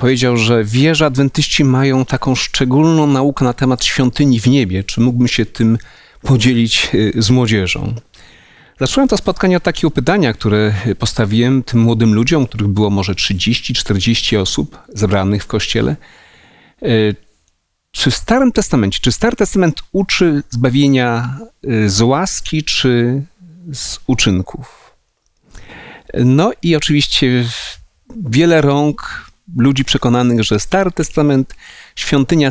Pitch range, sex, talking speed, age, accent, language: 115-155 Hz, male, 120 wpm, 40-59, native, Polish